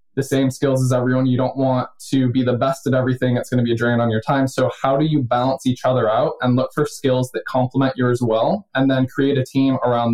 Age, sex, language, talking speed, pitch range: 20-39, male, English, 265 wpm, 120-140 Hz